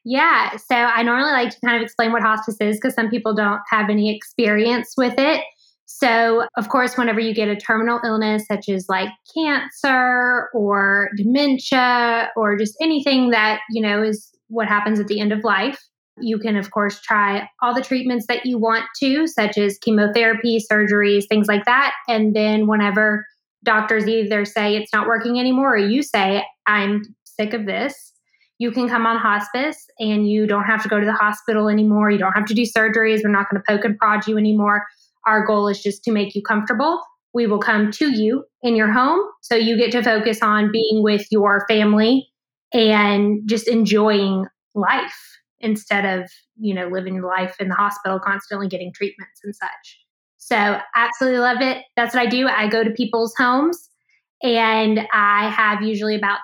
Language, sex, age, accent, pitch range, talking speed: English, female, 10-29, American, 210-240 Hz, 190 wpm